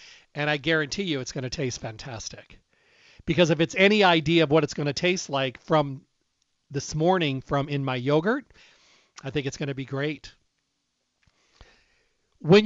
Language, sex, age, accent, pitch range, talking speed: English, male, 40-59, American, 140-165 Hz, 155 wpm